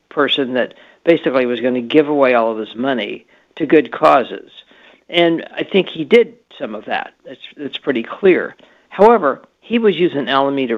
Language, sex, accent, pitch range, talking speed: English, male, American, 135-180 Hz, 180 wpm